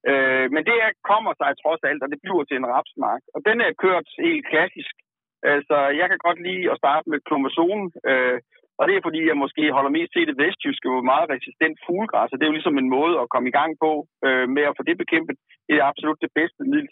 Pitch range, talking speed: 140-200 Hz, 240 wpm